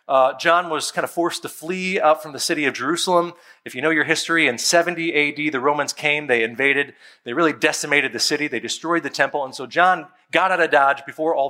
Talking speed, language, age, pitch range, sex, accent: 235 wpm, English, 40-59, 145-190 Hz, male, American